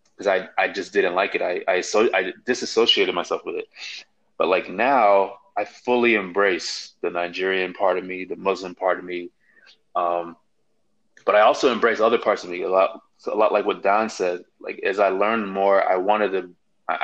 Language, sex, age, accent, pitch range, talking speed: English, male, 20-39, American, 90-120 Hz, 200 wpm